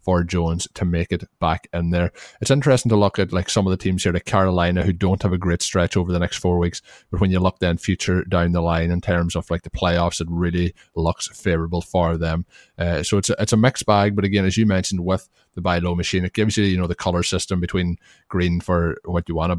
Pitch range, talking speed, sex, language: 85-95 Hz, 265 wpm, male, English